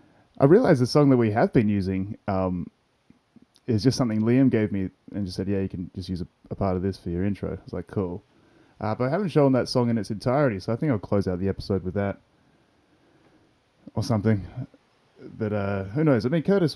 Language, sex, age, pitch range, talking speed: English, male, 20-39, 95-115 Hz, 235 wpm